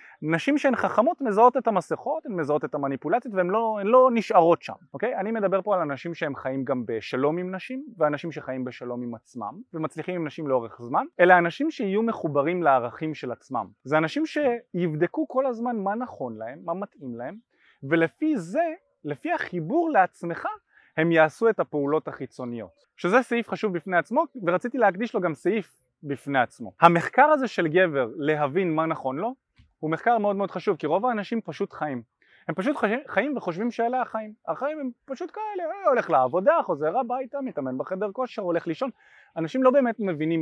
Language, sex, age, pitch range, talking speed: Hebrew, male, 20-39, 140-235 Hz, 170 wpm